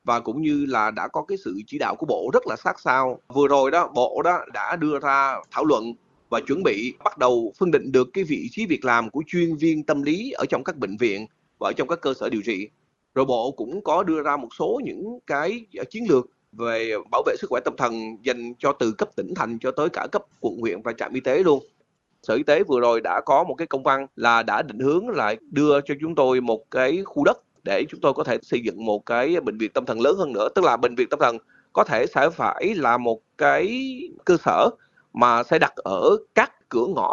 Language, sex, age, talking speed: Vietnamese, male, 20-39, 250 wpm